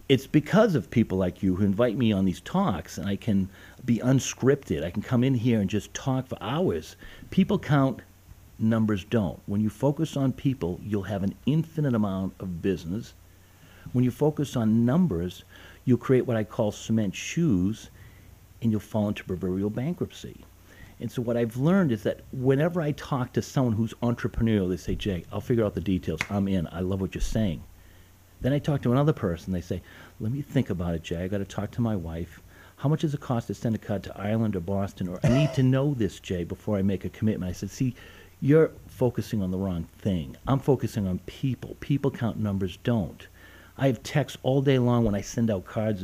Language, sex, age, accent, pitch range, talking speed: English, male, 50-69, American, 95-125 Hz, 215 wpm